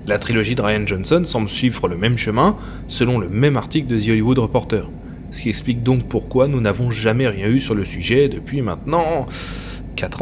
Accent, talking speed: French, 200 wpm